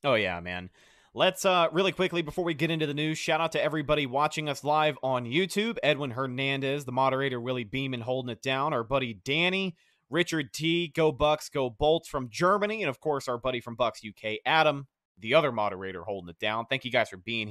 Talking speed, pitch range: 215 wpm, 130-170 Hz